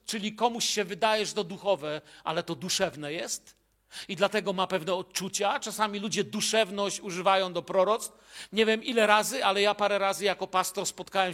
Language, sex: Polish, male